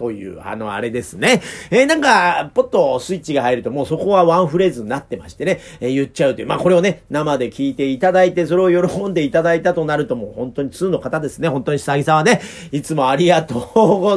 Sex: male